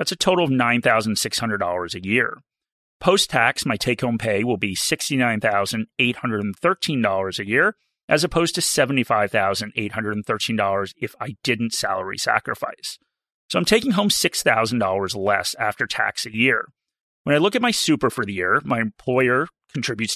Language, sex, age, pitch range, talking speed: English, male, 30-49, 110-145 Hz, 140 wpm